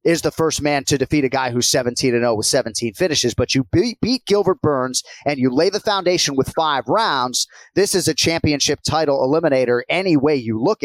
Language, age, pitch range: English, 30-49, 125-160 Hz